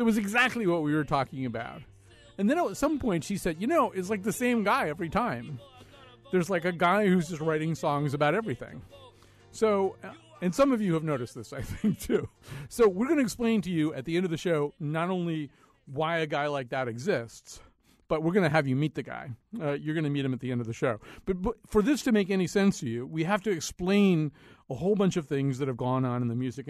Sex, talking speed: male, 255 wpm